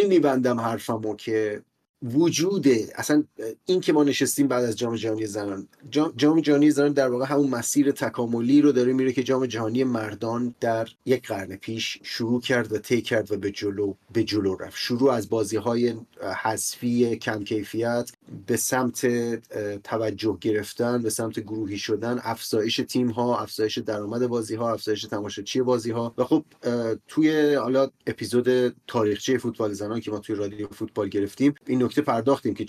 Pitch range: 110-125 Hz